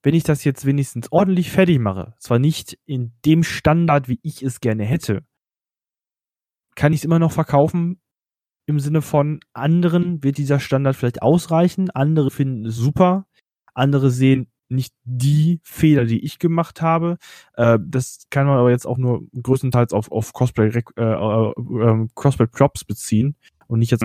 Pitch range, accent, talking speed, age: 120-150 Hz, German, 165 wpm, 20-39